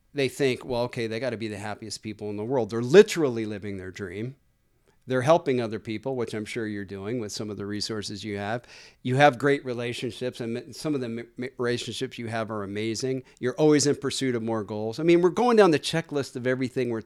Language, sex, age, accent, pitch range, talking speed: English, male, 40-59, American, 110-140 Hz, 230 wpm